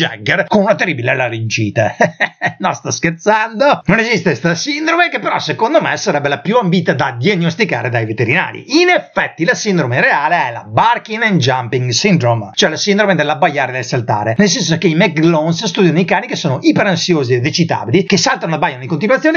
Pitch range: 140-205 Hz